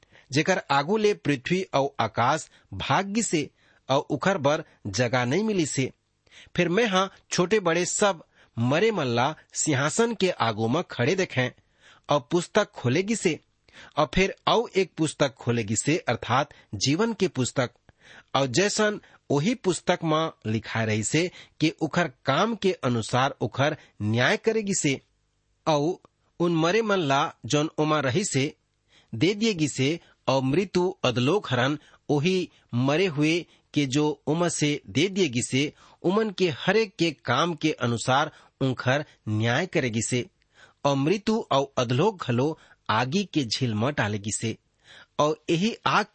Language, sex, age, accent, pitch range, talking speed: English, male, 40-59, Indian, 125-175 Hz, 125 wpm